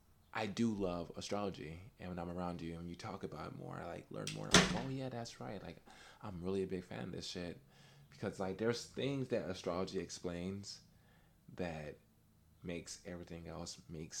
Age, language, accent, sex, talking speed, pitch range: 20-39, English, American, male, 185 wpm, 85-100 Hz